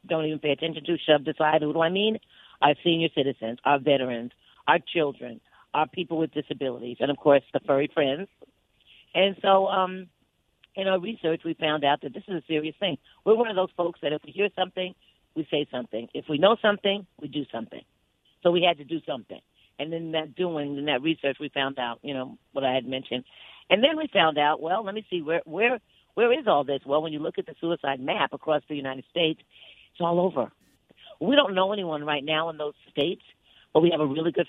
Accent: American